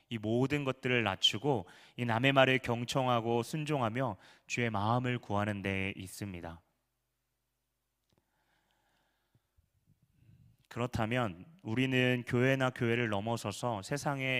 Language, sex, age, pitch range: Korean, male, 30-49, 105-135 Hz